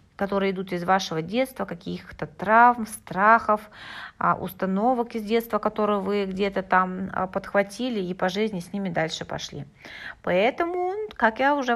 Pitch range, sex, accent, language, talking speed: 185-235 Hz, female, native, Russian, 140 wpm